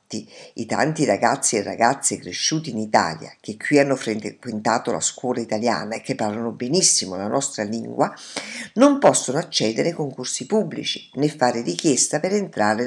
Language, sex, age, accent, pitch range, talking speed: Italian, female, 50-69, native, 125-195 Hz, 155 wpm